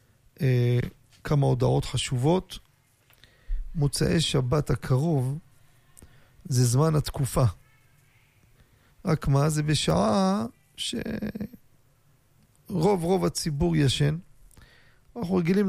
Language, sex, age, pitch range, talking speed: Hebrew, male, 40-59, 125-160 Hz, 75 wpm